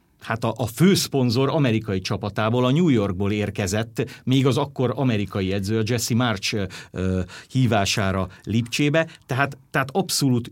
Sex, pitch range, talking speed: male, 105-145 Hz, 135 wpm